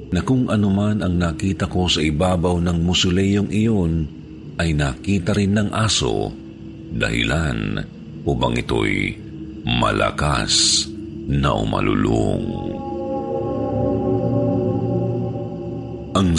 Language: Filipino